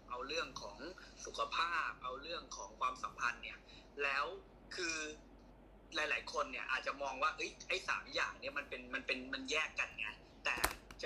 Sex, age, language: male, 20-39, Thai